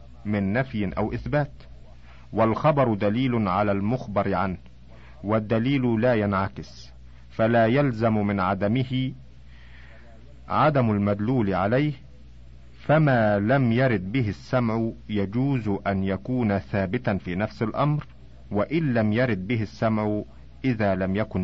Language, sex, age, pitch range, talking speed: Arabic, male, 50-69, 95-125 Hz, 110 wpm